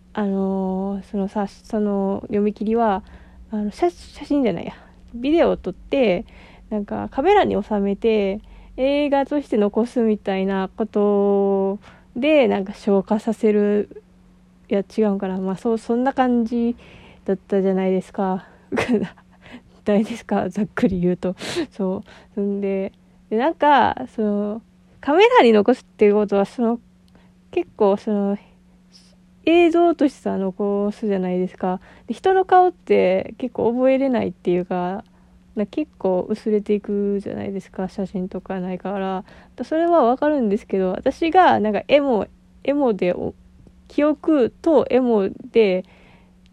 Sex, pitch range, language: female, 190-245 Hz, Japanese